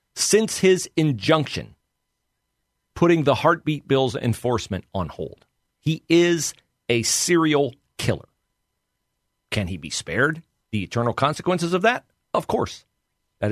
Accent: American